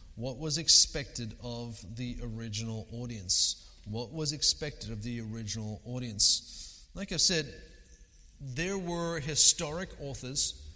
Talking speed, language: 115 wpm, English